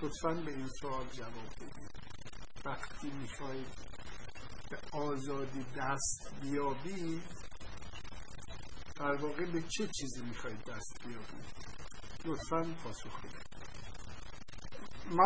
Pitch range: 125-160 Hz